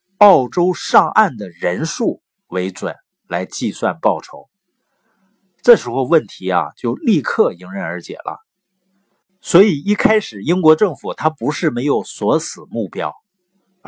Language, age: Chinese, 50-69